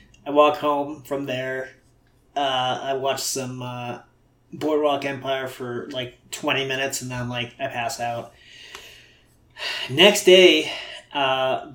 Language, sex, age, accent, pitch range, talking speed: English, male, 30-49, American, 125-175 Hz, 130 wpm